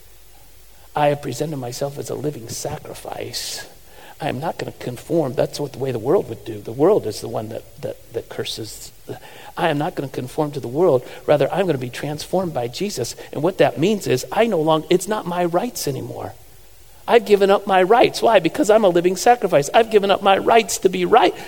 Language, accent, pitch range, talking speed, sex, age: English, American, 145-230 Hz, 215 wpm, male, 50-69